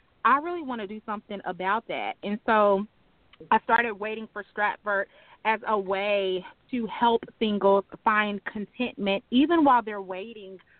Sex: female